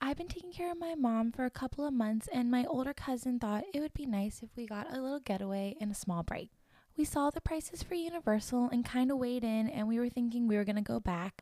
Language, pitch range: English, 215-280 Hz